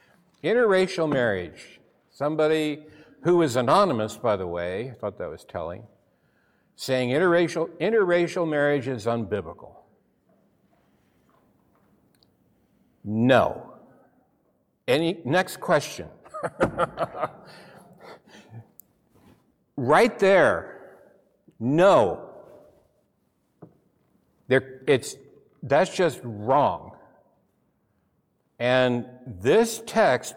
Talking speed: 70 wpm